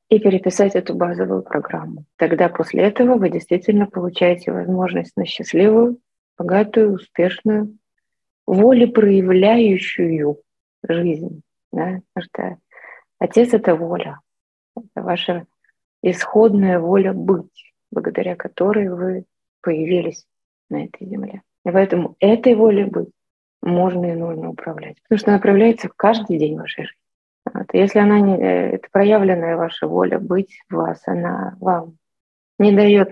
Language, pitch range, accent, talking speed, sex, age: Russian, 175-220 Hz, native, 120 wpm, female, 30-49